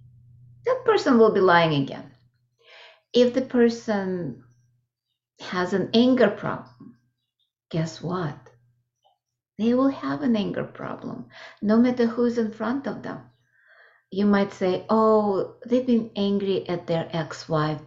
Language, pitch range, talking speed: English, 150-220 Hz, 130 wpm